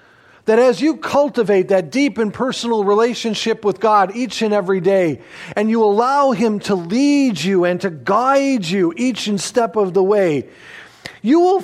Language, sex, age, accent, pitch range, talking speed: English, male, 40-59, American, 195-255 Hz, 170 wpm